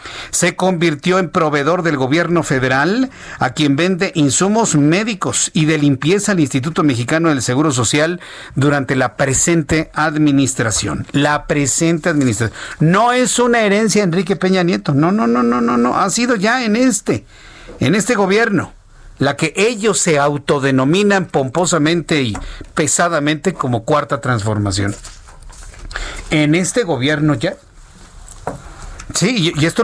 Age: 50-69